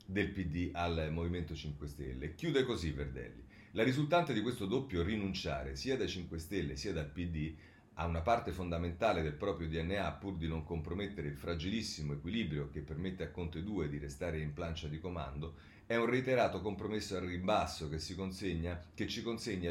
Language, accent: Italian, native